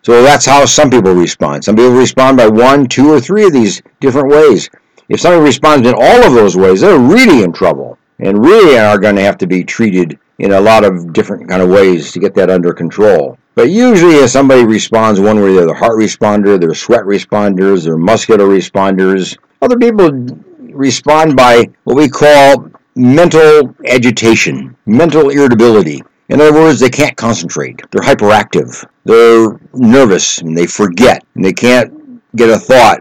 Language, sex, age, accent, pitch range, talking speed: English, male, 60-79, American, 100-145 Hz, 180 wpm